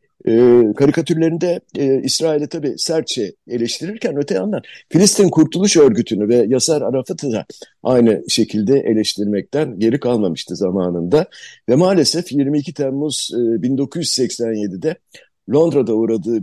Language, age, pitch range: Turkish, 60-79, 105-150 Hz